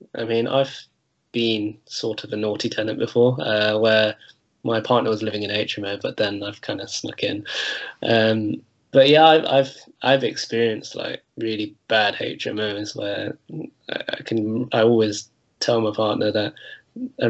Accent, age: British, 20-39